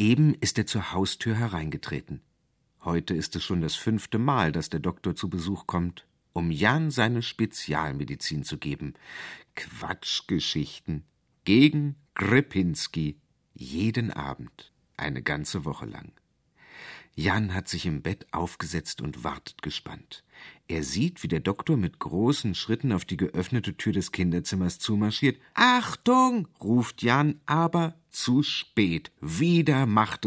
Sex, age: male, 50-69